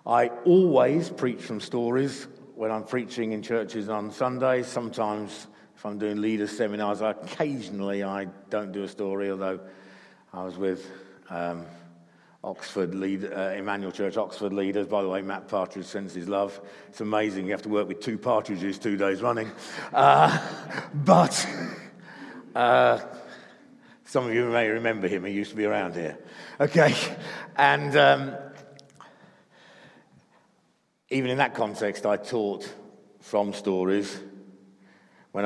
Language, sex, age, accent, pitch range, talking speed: English, male, 50-69, British, 100-120 Hz, 140 wpm